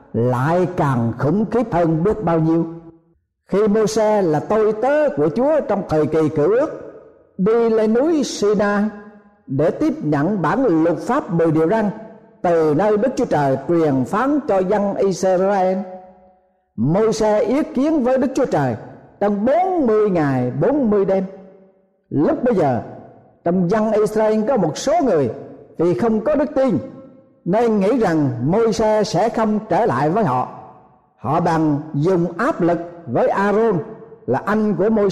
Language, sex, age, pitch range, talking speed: Vietnamese, male, 60-79, 165-225 Hz, 160 wpm